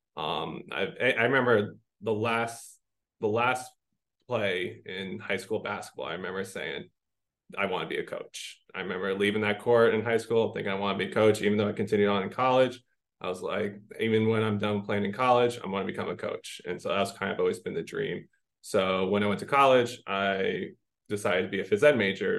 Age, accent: 20-39, American